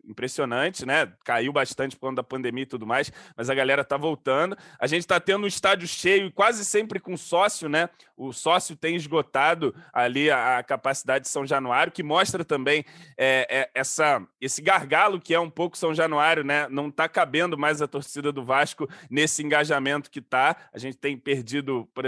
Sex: male